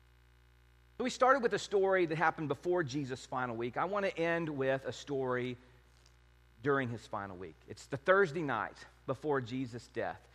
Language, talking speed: English, 175 wpm